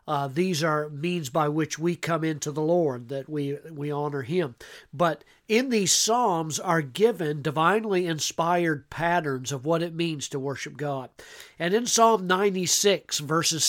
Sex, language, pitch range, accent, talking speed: male, English, 145-175 Hz, American, 160 wpm